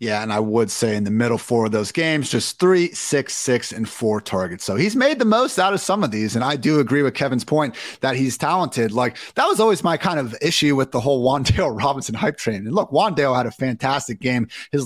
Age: 30-49